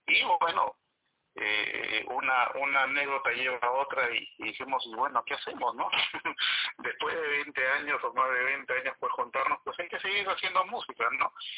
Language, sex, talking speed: Spanish, male, 175 wpm